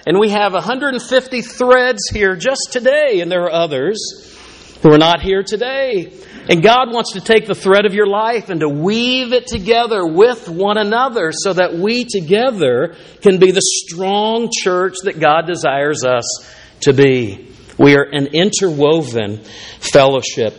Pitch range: 155-230 Hz